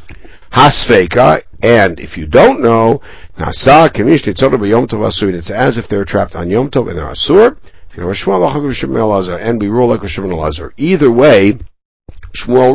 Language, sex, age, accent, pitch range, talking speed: English, male, 60-79, American, 95-130 Hz, 130 wpm